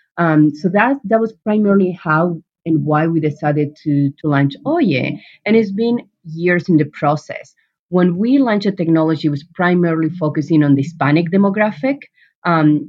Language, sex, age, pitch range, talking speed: English, female, 30-49, 150-185 Hz, 170 wpm